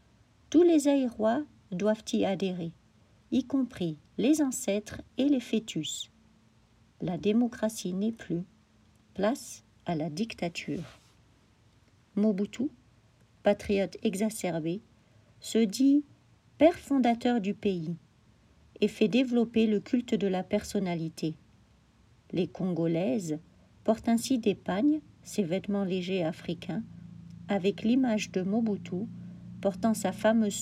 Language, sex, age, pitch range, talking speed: English, female, 50-69, 165-225 Hz, 110 wpm